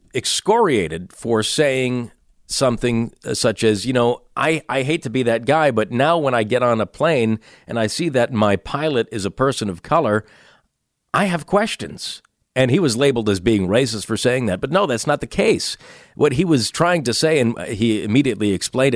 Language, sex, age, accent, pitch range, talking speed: English, male, 40-59, American, 105-140 Hz, 200 wpm